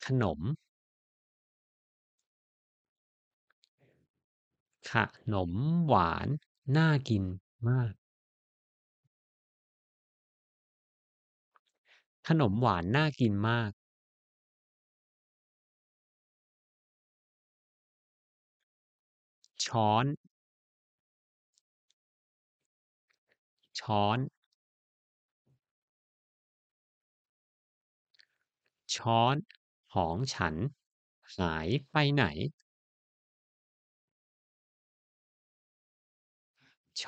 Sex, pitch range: male, 85-130 Hz